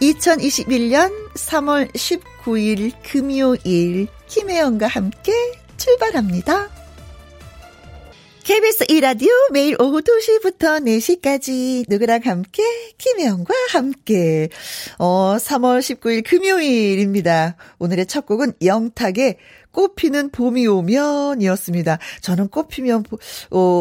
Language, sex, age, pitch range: Korean, female, 40-59, 195-315 Hz